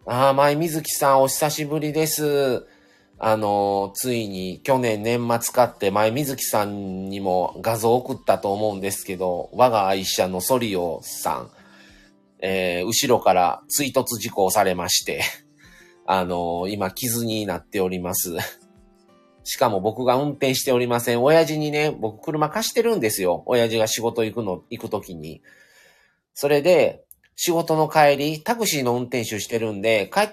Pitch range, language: 100-145 Hz, Japanese